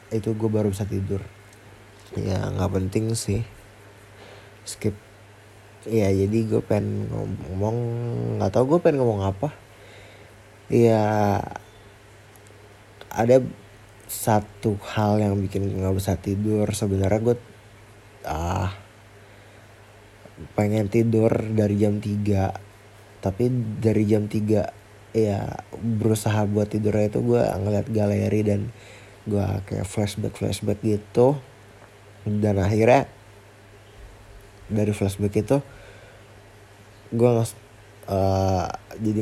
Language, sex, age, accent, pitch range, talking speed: Indonesian, male, 20-39, native, 100-110 Hz, 95 wpm